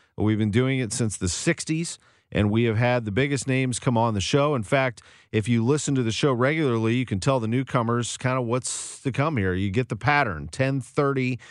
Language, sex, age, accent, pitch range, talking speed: English, male, 40-59, American, 105-130 Hz, 225 wpm